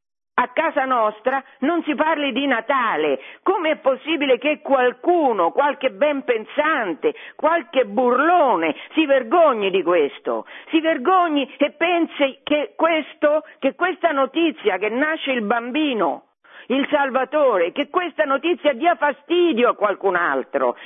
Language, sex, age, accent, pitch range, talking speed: Italian, female, 50-69, native, 250-330 Hz, 125 wpm